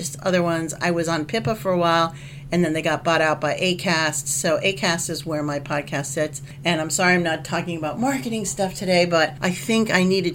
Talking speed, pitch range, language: 225 wpm, 150-190 Hz, English